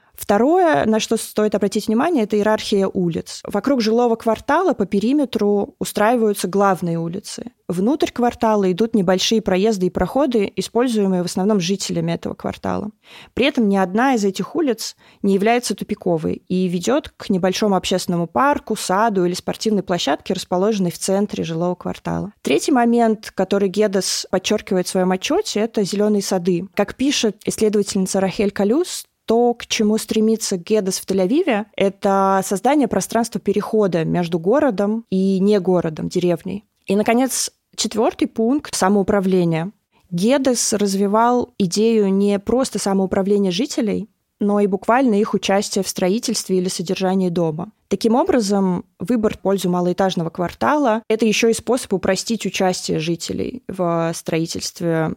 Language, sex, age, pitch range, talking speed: Russian, female, 20-39, 190-225 Hz, 140 wpm